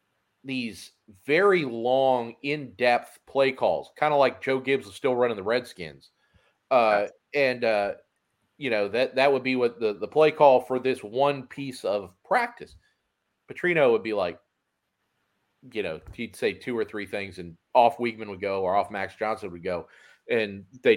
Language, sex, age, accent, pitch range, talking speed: English, male, 40-59, American, 95-130 Hz, 175 wpm